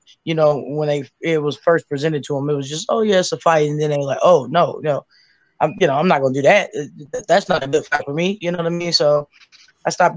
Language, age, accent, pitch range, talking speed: English, 20-39, American, 160-190 Hz, 290 wpm